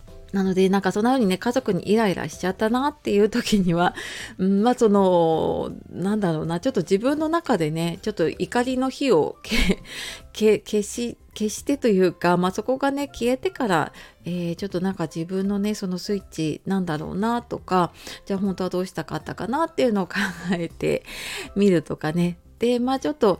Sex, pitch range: female, 175-235 Hz